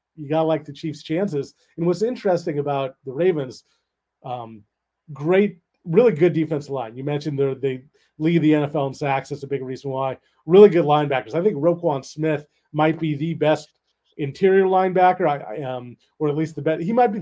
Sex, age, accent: male, 30-49, American